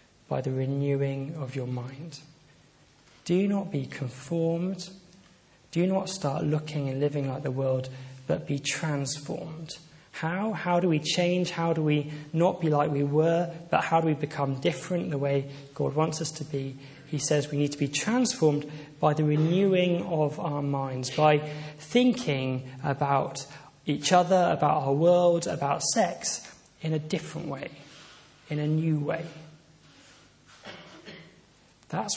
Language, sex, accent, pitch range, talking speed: English, male, British, 140-165 Hz, 150 wpm